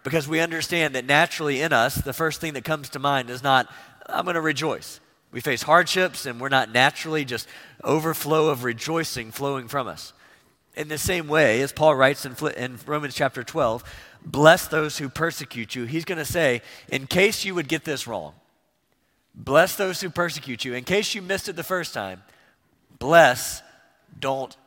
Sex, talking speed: male, 185 wpm